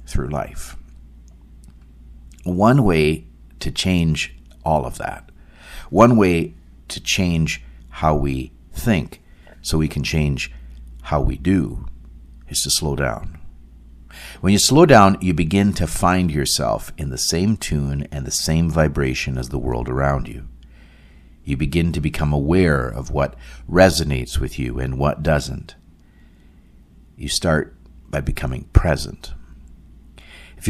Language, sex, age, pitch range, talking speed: English, male, 50-69, 65-85 Hz, 135 wpm